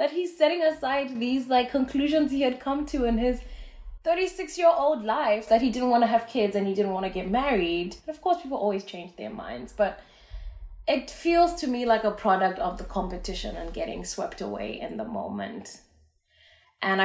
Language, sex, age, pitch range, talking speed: English, female, 20-39, 150-240 Hz, 205 wpm